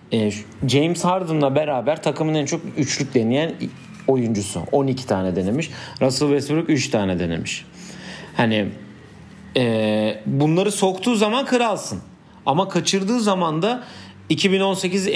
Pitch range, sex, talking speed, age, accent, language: 120-180 Hz, male, 110 wpm, 40-59, native, Turkish